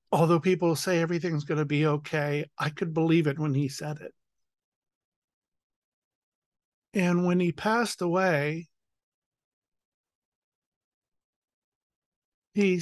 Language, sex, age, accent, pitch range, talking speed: English, male, 50-69, American, 150-180 Hz, 105 wpm